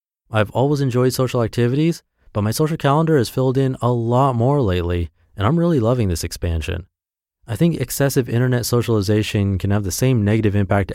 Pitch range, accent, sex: 90-130 Hz, American, male